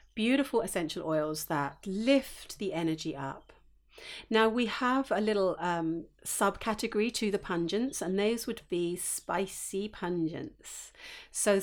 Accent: British